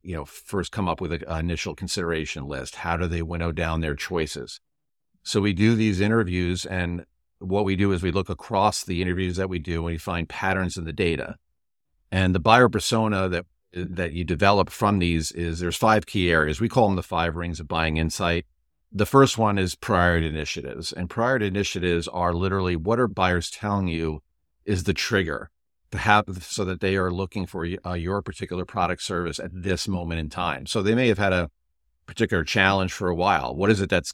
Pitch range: 80-95 Hz